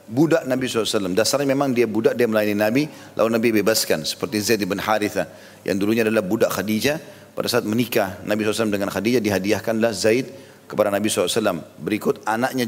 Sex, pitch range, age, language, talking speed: male, 105-130 Hz, 40-59, Indonesian, 170 wpm